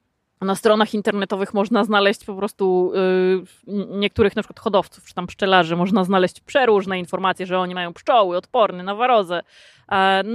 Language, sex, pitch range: Polish, female, 195-235 Hz